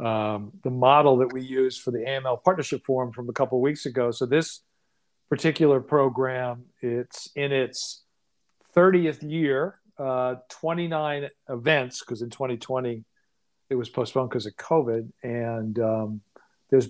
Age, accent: 50-69, American